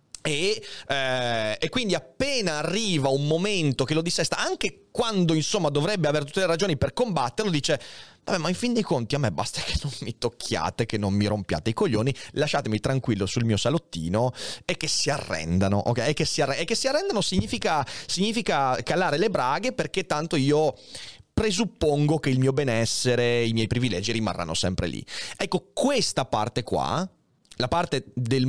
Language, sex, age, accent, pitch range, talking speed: Italian, male, 30-49, native, 115-170 Hz, 180 wpm